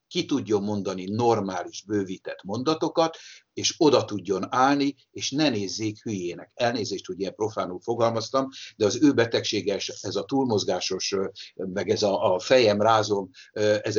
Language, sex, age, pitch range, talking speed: Hungarian, male, 60-79, 100-145 Hz, 140 wpm